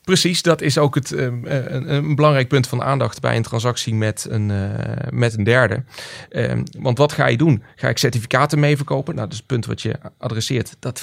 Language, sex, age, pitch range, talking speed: Dutch, male, 30-49, 115-140 Hz, 205 wpm